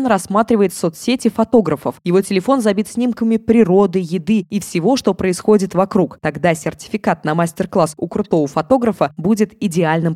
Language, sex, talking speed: Russian, female, 135 wpm